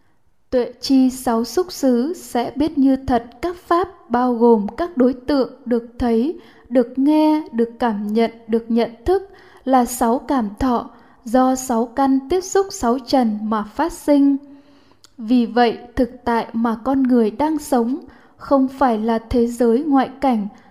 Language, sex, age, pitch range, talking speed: Vietnamese, female, 10-29, 235-290 Hz, 160 wpm